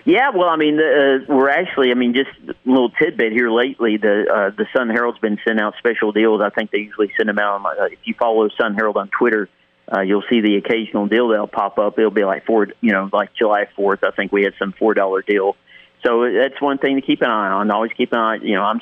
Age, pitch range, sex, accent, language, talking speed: 50-69, 105-120 Hz, male, American, English, 260 wpm